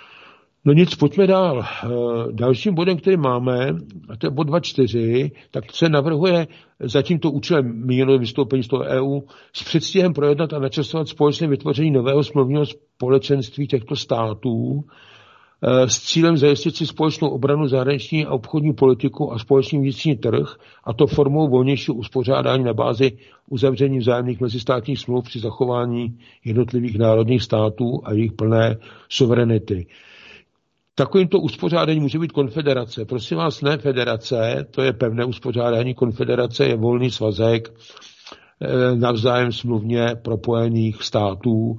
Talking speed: 130 wpm